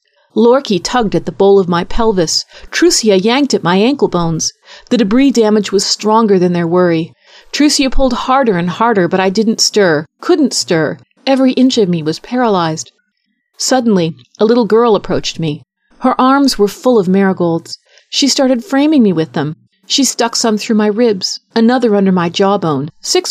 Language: English